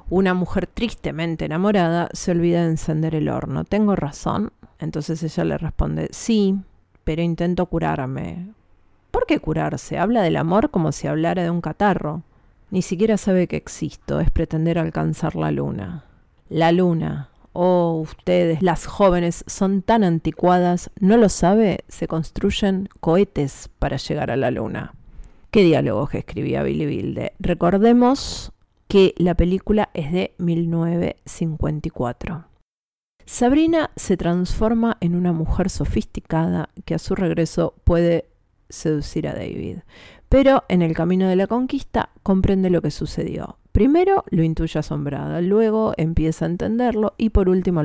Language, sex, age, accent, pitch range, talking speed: Spanish, female, 40-59, Argentinian, 160-195 Hz, 140 wpm